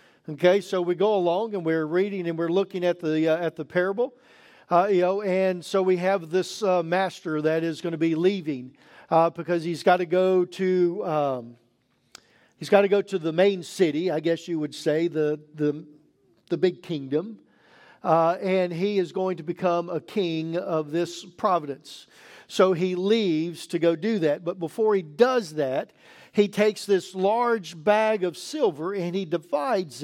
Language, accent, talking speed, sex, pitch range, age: English, American, 185 wpm, male, 175-250 Hz, 50-69